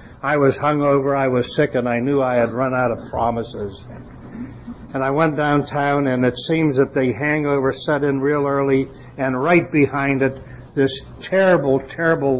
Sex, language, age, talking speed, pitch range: male, English, 60-79, 175 wpm, 130-170 Hz